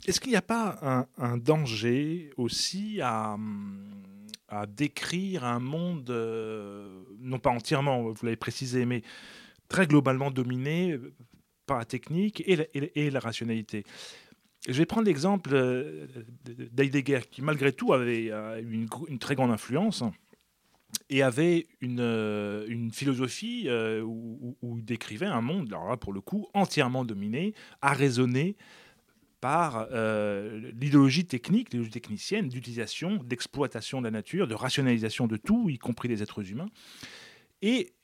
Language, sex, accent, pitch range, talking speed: French, male, French, 115-160 Hz, 140 wpm